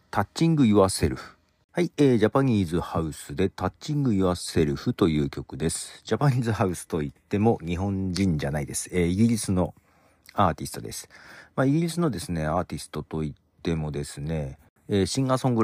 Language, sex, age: Japanese, male, 40-59